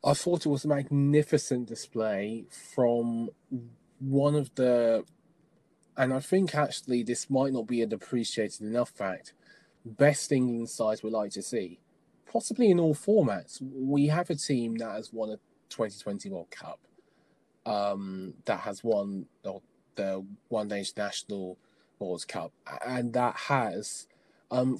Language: English